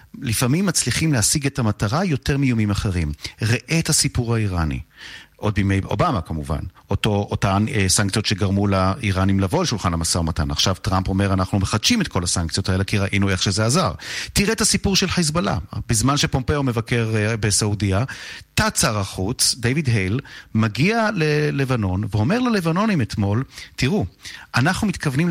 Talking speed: 145 wpm